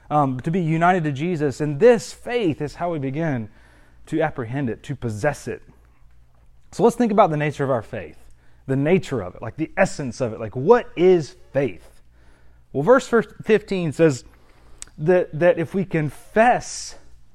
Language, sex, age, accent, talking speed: English, male, 30-49, American, 175 wpm